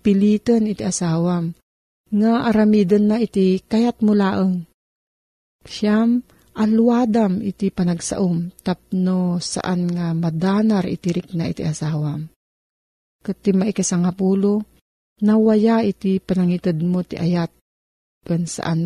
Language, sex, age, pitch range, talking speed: Filipino, female, 40-59, 165-210 Hz, 100 wpm